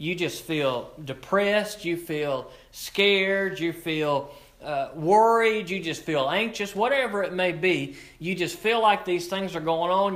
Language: English